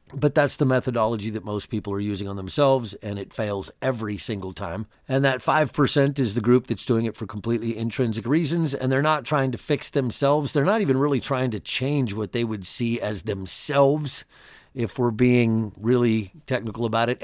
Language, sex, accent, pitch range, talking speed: English, male, American, 105-130 Hz, 200 wpm